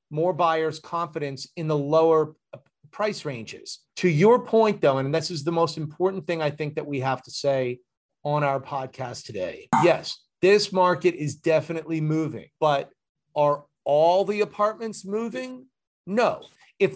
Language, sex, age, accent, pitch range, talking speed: English, male, 40-59, American, 145-195 Hz, 155 wpm